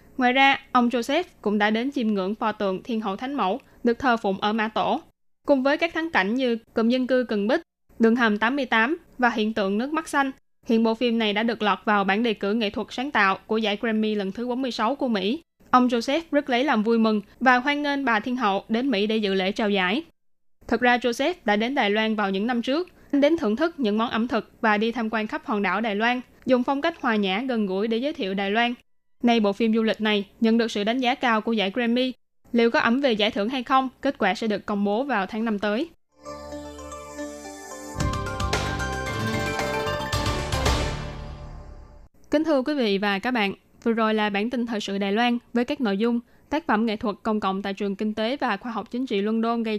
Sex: female